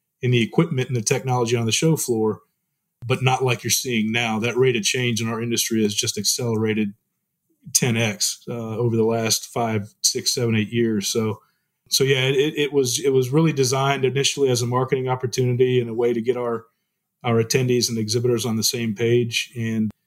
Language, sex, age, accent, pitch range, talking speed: English, male, 30-49, American, 110-130 Hz, 195 wpm